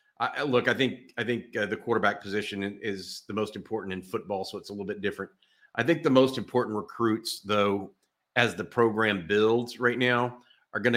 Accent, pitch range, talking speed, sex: American, 95-115 Hz, 195 wpm, male